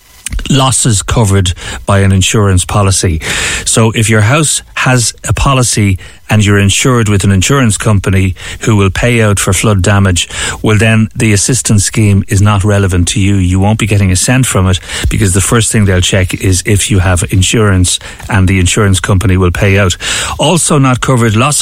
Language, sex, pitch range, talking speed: English, male, 100-130 Hz, 185 wpm